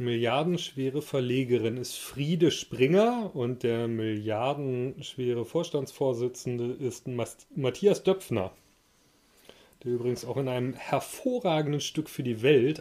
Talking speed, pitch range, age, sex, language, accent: 105 wpm, 125-150 Hz, 30-49, male, German, German